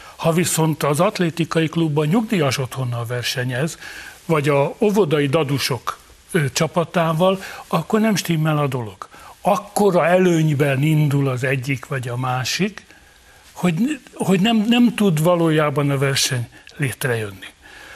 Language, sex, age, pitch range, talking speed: Hungarian, male, 60-79, 150-205 Hz, 125 wpm